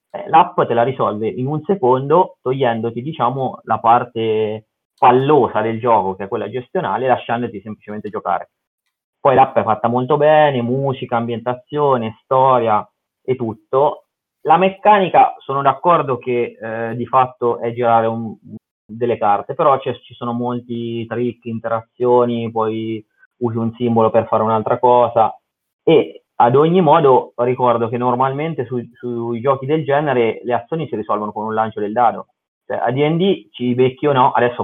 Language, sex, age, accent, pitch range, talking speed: Italian, male, 30-49, native, 110-130 Hz, 150 wpm